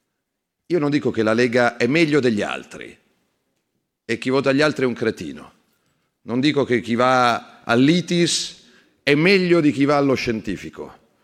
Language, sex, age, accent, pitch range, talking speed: Italian, male, 40-59, native, 120-165 Hz, 165 wpm